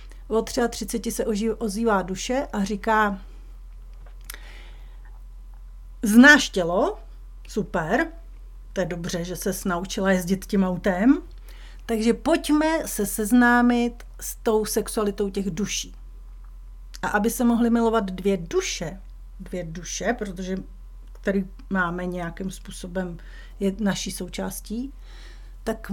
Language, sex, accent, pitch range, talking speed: Czech, female, native, 190-240 Hz, 105 wpm